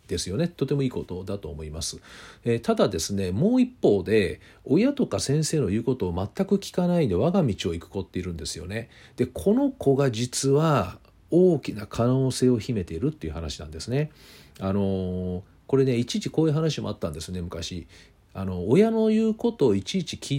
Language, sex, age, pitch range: Japanese, male, 40-59, 90-145 Hz